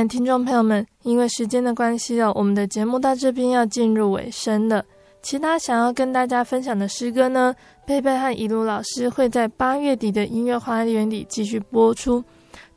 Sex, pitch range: female, 220-255 Hz